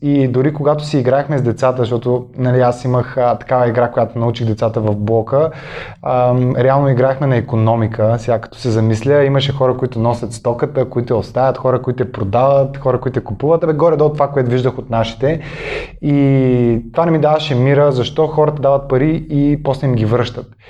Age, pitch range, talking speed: 20-39, 115-145 Hz, 185 wpm